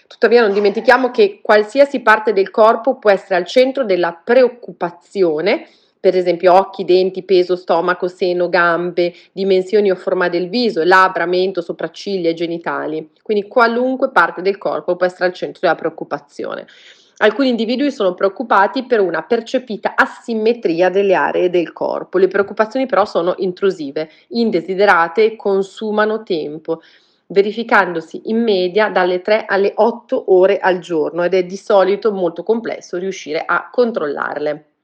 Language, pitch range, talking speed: Italian, 180-230 Hz, 145 wpm